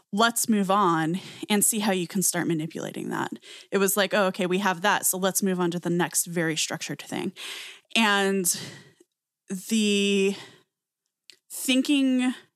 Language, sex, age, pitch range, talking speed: English, female, 20-39, 180-230 Hz, 155 wpm